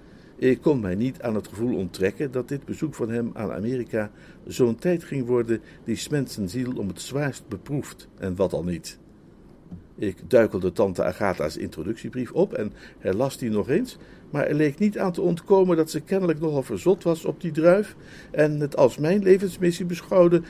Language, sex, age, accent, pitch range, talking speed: Dutch, male, 50-69, Dutch, 115-160 Hz, 185 wpm